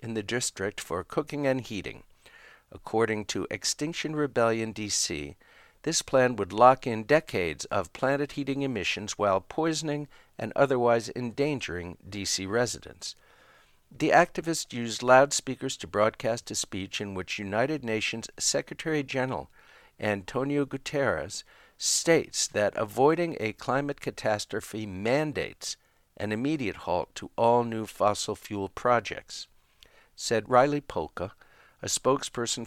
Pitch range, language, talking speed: 105-140 Hz, English, 120 wpm